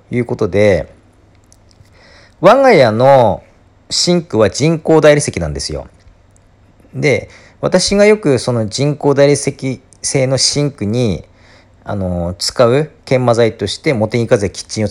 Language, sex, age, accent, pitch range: Japanese, male, 40-59, native, 95-150 Hz